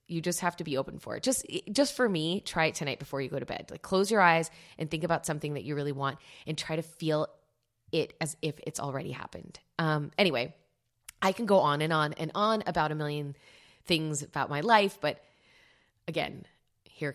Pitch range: 145-165 Hz